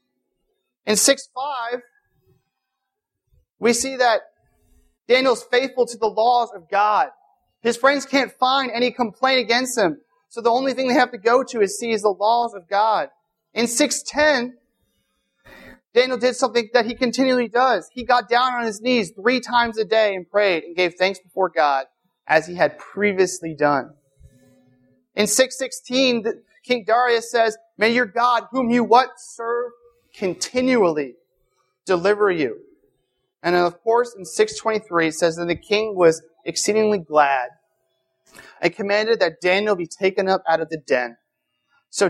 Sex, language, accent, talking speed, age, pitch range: male, English, American, 155 wpm, 30-49, 165-245 Hz